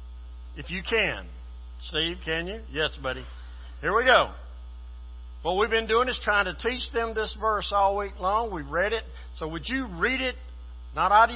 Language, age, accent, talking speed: English, 60-79, American, 190 wpm